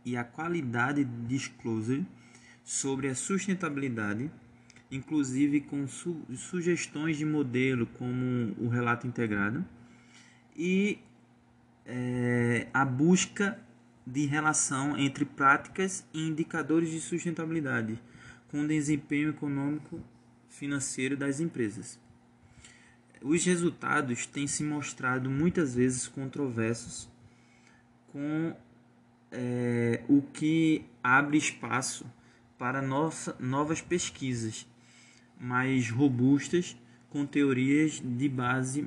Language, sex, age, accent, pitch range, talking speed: Portuguese, male, 20-39, Brazilian, 120-150 Hz, 90 wpm